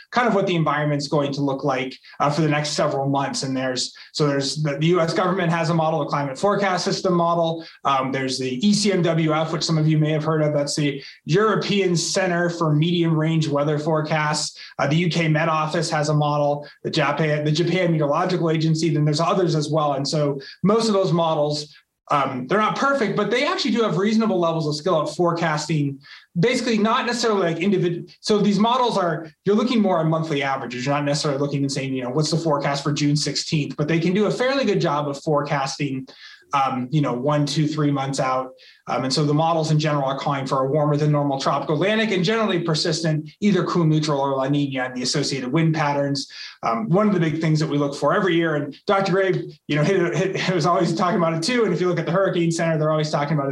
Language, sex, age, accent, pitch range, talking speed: English, male, 20-39, American, 145-180 Hz, 230 wpm